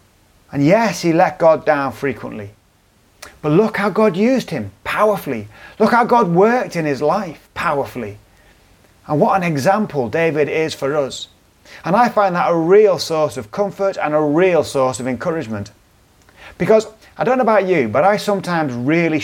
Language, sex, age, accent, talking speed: English, male, 30-49, British, 170 wpm